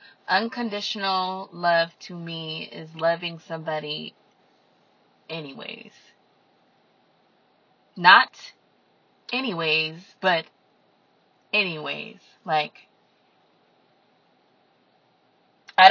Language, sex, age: English, female, 20-39